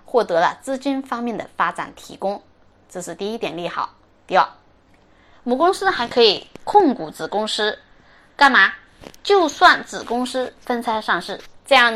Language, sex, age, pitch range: Chinese, female, 20-39, 195-275 Hz